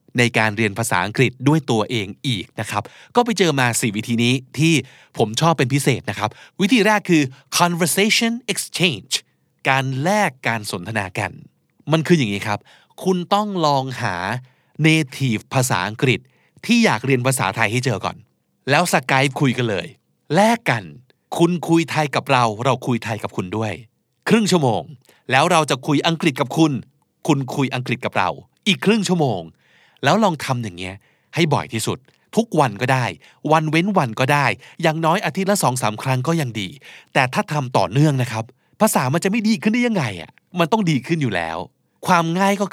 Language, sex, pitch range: Thai, male, 115-170 Hz